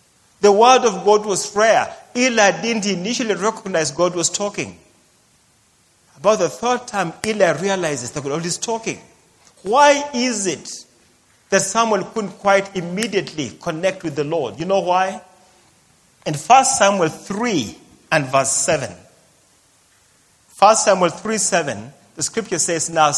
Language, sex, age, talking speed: English, male, 40-59, 135 wpm